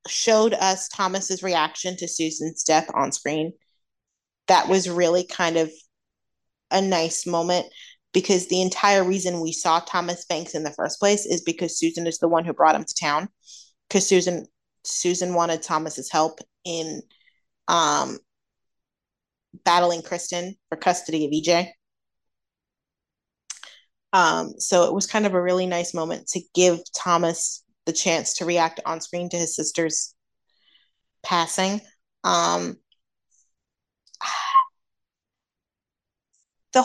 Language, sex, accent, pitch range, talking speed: English, female, American, 165-215 Hz, 130 wpm